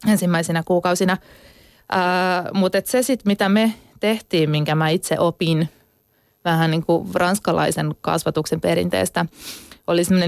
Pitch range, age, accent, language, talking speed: 165-200 Hz, 20-39, native, Finnish, 130 wpm